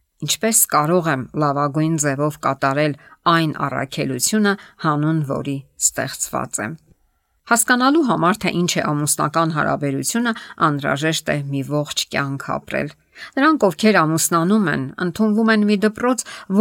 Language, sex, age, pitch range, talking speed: English, female, 50-69, 150-210 Hz, 120 wpm